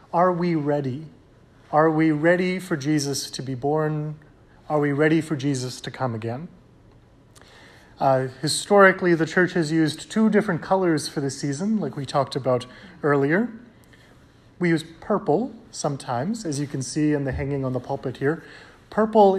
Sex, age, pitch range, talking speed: male, 30-49, 130-165 Hz, 160 wpm